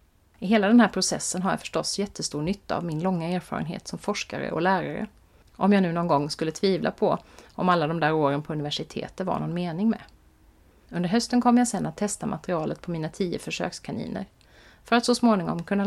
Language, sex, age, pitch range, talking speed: Swedish, female, 30-49, 165-220 Hz, 205 wpm